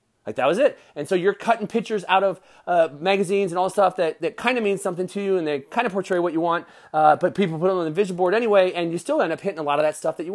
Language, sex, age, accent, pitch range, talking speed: English, male, 30-49, American, 160-215 Hz, 315 wpm